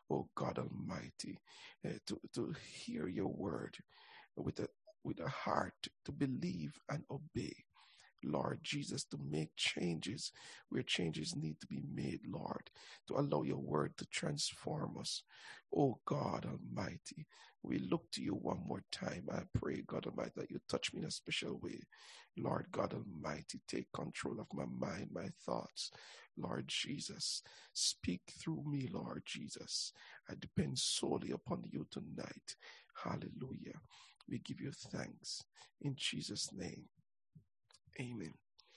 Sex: male